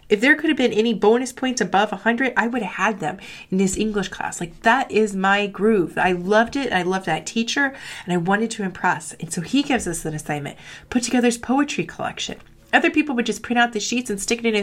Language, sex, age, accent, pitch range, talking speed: English, female, 30-49, American, 185-245 Hz, 250 wpm